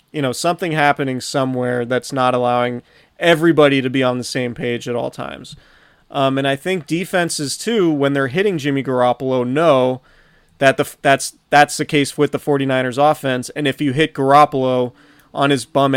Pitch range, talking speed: 125-145 Hz, 180 wpm